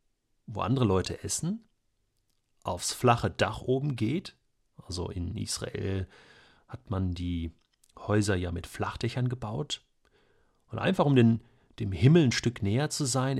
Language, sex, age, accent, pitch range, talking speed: German, male, 40-59, German, 100-125 Hz, 135 wpm